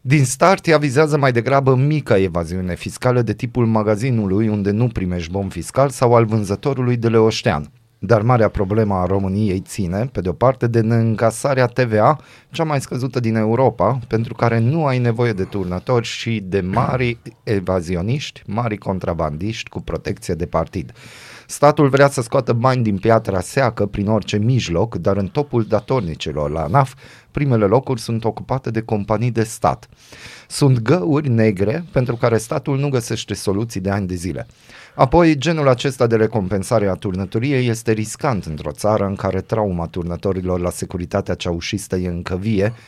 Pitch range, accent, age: 100-125 Hz, native, 30-49